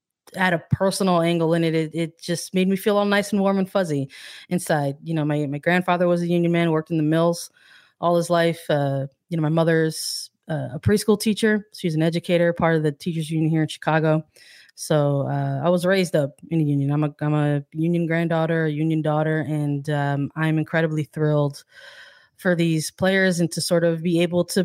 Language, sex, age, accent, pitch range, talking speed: English, female, 20-39, American, 160-195 Hz, 215 wpm